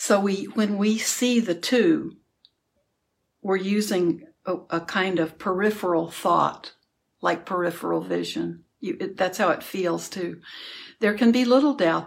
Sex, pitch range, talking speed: female, 180-225 Hz, 150 wpm